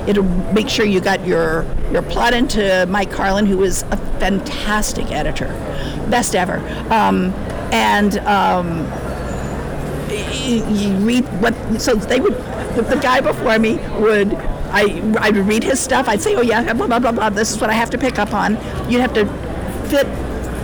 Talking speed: 170 wpm